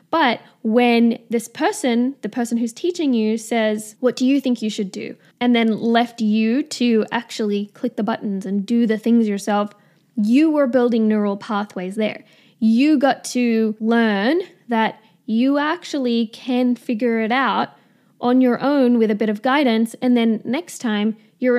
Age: 10-29